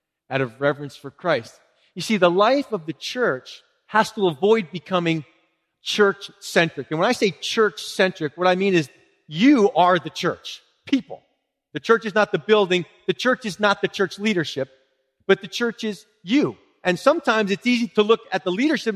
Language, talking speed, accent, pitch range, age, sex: English, 185 wpm, American, 175-230 Hz, 40-59, male